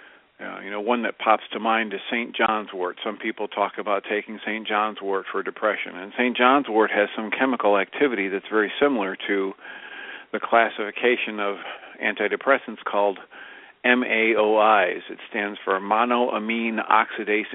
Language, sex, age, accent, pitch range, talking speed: English, male, 50-69, American, 105-125 Hz, 155 wpm